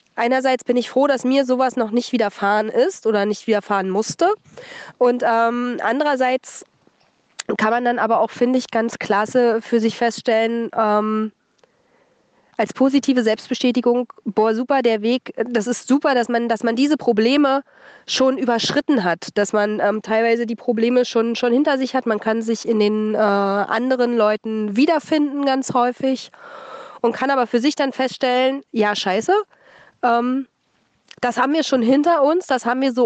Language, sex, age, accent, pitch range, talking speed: German, female, 20-39, German, 215-255 Hz, 165 wpm